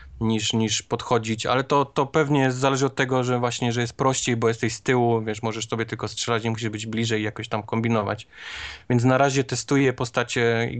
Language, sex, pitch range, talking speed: Polish, male, 105-125 Hz, 210 wpm